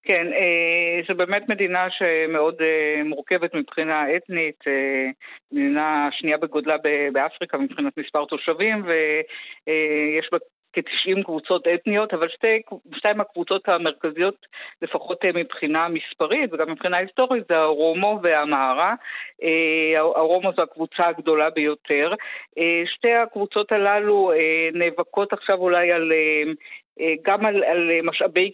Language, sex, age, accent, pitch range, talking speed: Hebrew, female, 50-69, native, 155-190 Hz, 105 wpm